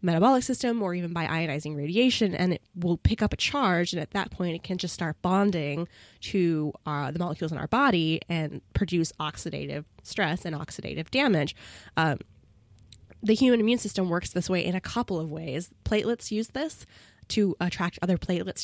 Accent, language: American, English